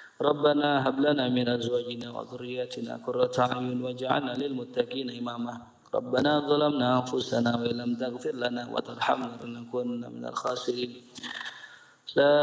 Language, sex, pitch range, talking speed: Indonesian, male, 120-150 Hz, 135 wpm